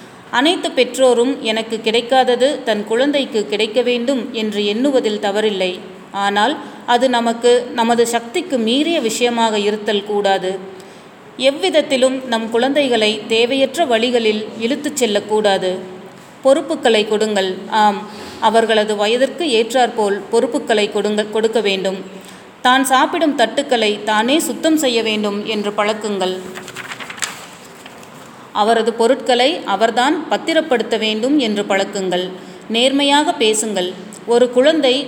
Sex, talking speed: female, 100 wpm